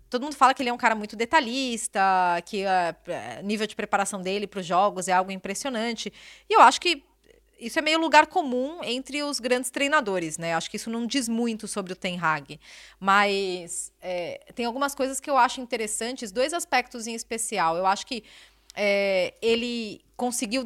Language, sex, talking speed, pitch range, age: Portuguese, female, 185 wpm, 200-260 Hz, 20-39